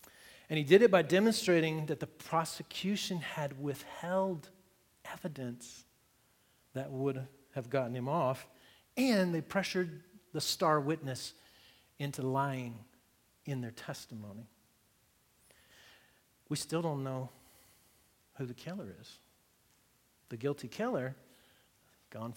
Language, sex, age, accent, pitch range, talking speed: English, male, 50-69, American, 120-160 Hz, 110 wpm